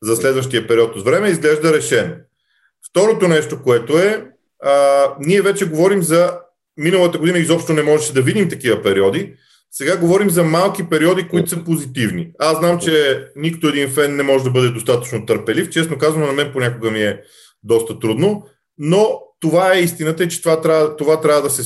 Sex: male